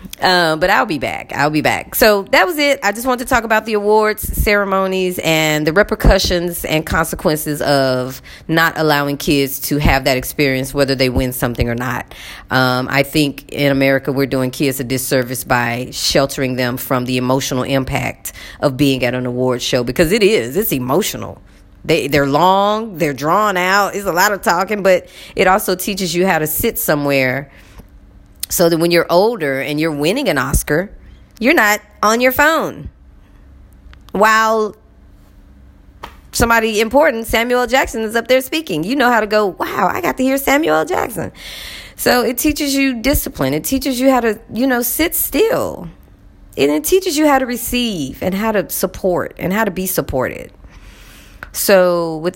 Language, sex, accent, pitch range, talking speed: English, female, American, 135-220 Hz, 180 wpm